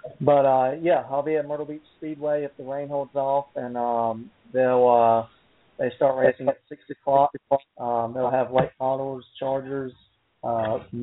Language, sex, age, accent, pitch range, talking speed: English, male, 40-59, American, 115-135 Hz, 170 wpm